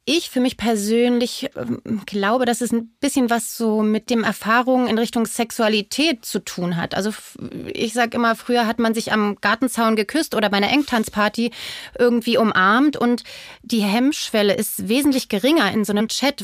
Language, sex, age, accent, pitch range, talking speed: German, female, 30-49, German, 205-240 Hz, 170 wpm